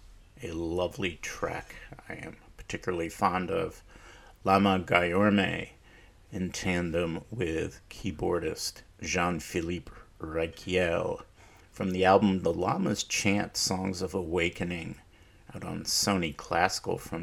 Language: English